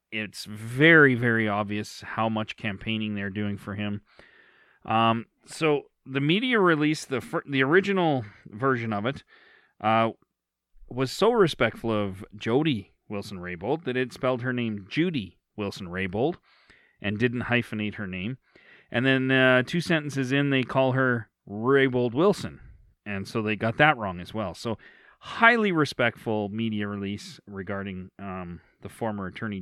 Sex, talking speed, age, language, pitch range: male, 150 wpm, 40-59, English, 105-130 Hz